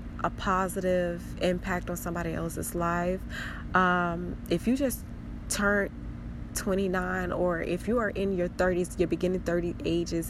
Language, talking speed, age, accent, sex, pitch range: English, 140 wpm, 20-39, American, female, 165-185 Hz